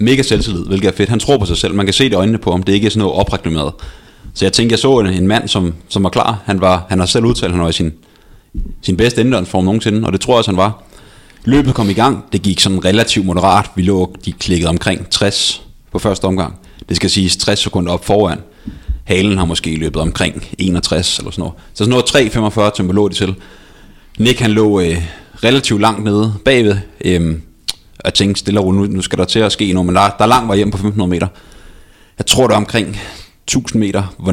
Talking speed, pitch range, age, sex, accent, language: 240 wpm, 90-105 Hz, 30-49, male, native, Danish